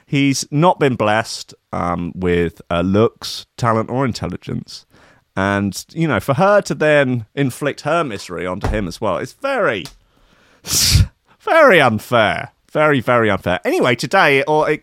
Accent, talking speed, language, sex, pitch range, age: British, 150 wpm, English, male, 95-150 Hz, 30-49